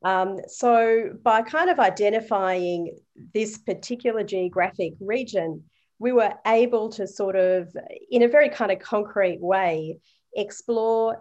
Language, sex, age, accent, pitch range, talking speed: English, female, 40-59, Australian, 185-225 Hz, 130 wpm